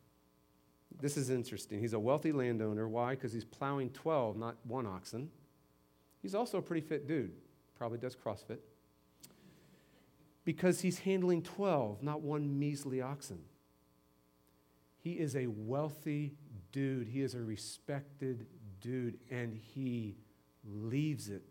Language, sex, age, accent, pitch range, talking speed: English, male, 40-59, American, 110-155 Hz, 130 wpm